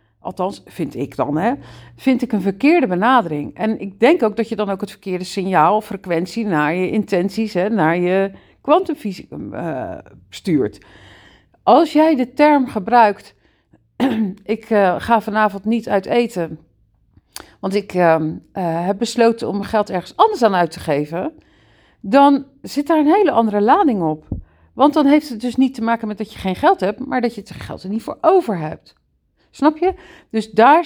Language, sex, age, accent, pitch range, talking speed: Dutch, female, 50-69, Dutch, 180-245 Hz, 175 wpm